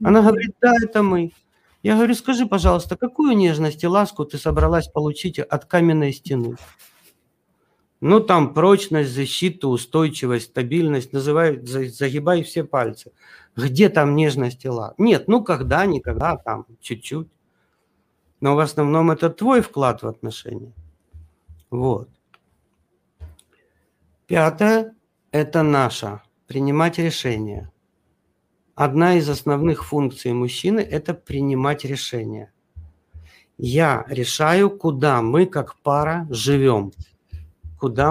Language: Russian